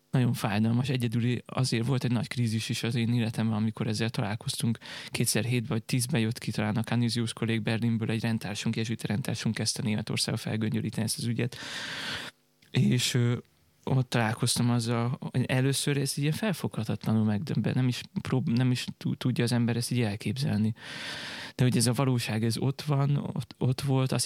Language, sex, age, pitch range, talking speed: Hungarian, male, 20-39, 110-130 Hz, 170 wpm